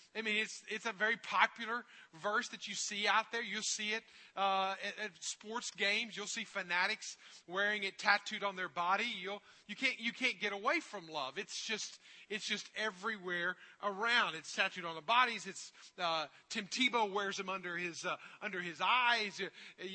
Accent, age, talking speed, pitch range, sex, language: American, 40-59, 205 wpm, 185-235 Hz, male, English